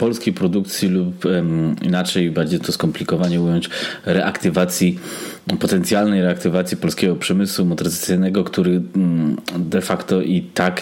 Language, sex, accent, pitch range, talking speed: Polish, male, native, 90-105 Hz, 105 wpm